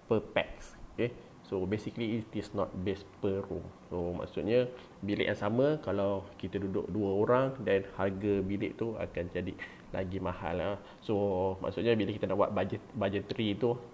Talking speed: 170 wpm